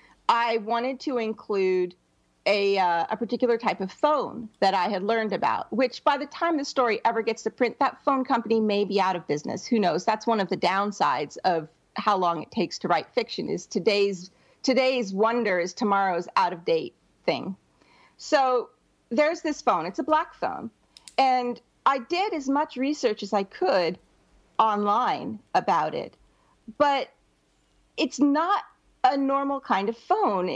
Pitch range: 205-280 Hz